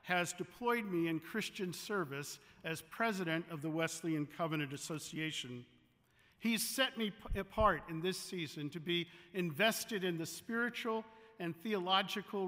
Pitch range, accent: 165-205 Hz, American